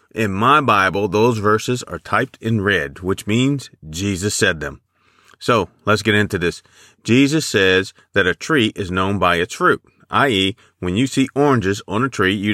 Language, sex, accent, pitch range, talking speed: English, male, American, 95-125 Hz, 180 wpm